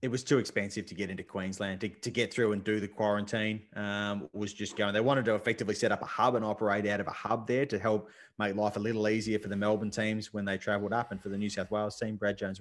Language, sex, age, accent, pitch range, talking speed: English, male, 20-39, Australian, 105-125 Hz, 280 wpm